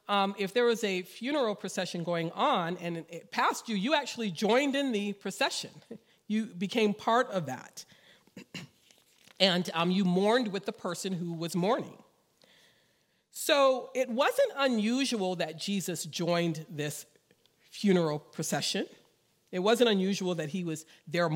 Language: English